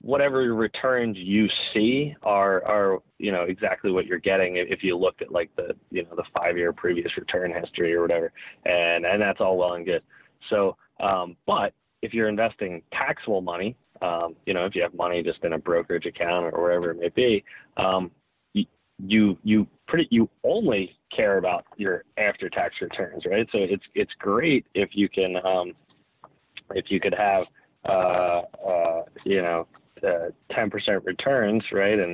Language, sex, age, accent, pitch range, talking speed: English, male, 20-39, American, 90-115 Hz, 180 wpm